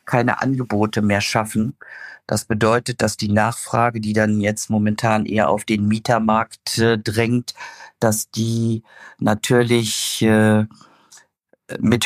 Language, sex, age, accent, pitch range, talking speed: German, male, 50-69, German, 105-120 Hz, 120 wpm